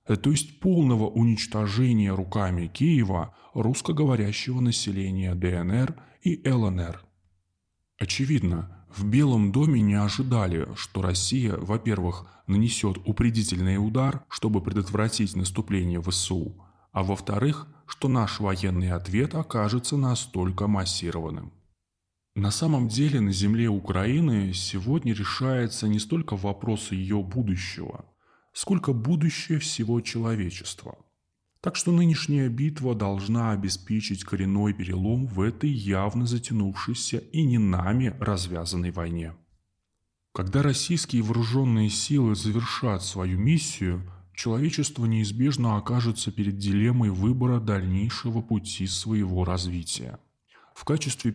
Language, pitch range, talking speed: Russian, 95-125 Hz, 105 wpm